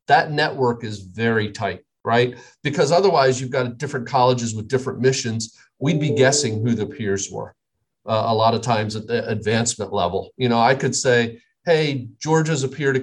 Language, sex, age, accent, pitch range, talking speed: English, male, 40-59, American, 110-135 Hz, 190 wpm